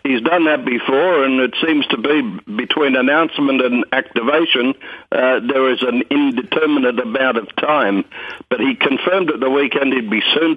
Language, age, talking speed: English, 60-79, 170 wpm